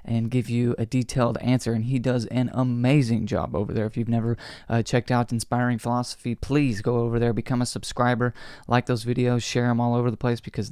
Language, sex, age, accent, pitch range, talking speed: English, male, 20-39, American, 115-130 Hz, 220 wpm